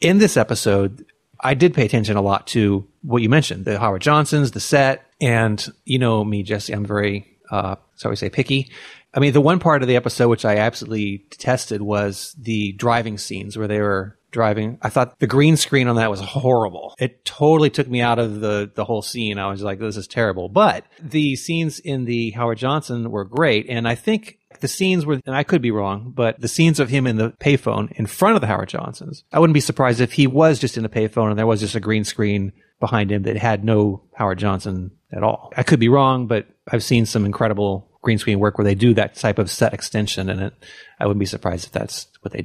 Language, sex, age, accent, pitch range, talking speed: English, male, 30-49, American, 105-135 Hz, 235 wpm